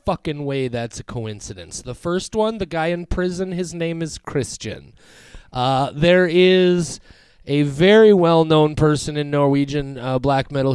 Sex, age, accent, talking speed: male, 30-49, American, 155 wpm